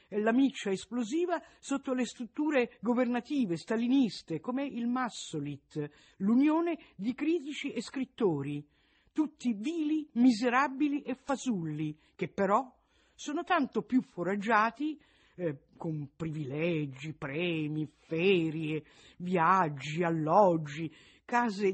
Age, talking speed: 50-69, 95 wpm